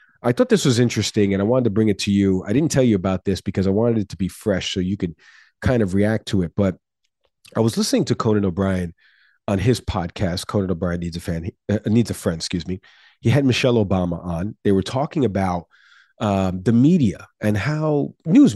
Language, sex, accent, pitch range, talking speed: English, male, American, 95-115 Hz, 225 wpm